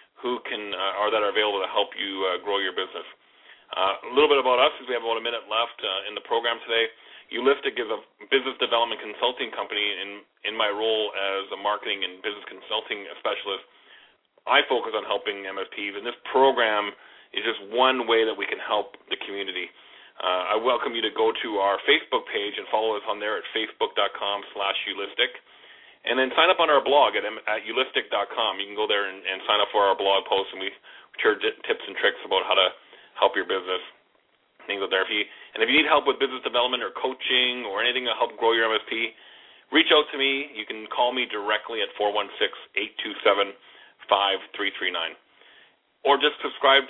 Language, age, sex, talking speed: English, 30-49, male, 190 wpm